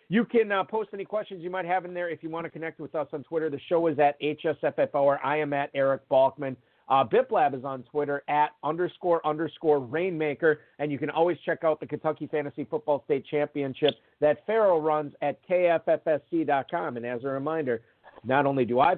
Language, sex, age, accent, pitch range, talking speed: English, male, 50-69, American, 135-170 Hz, 200 wpm